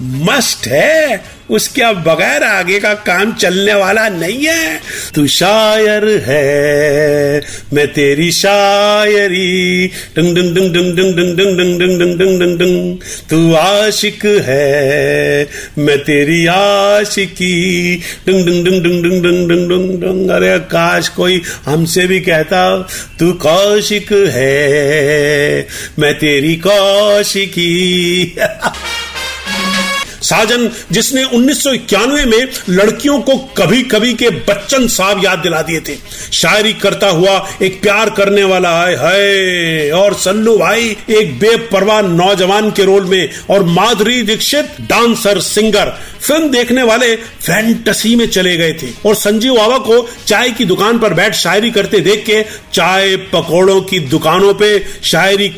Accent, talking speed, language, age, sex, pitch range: native, 115 wpm, Hindi, 50-69, male, 170-210 Hz